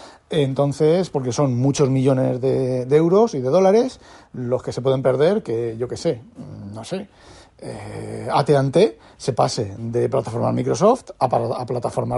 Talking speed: 160 wpm